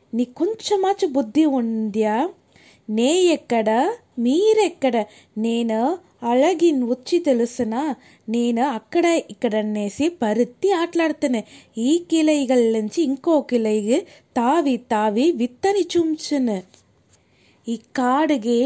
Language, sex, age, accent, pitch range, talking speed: Telugu, female, 20-39, native, 240-315 Hz, 85 wpm